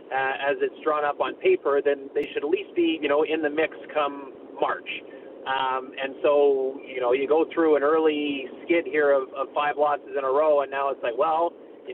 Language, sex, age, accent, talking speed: English, male, 30-49, American, 225 wpm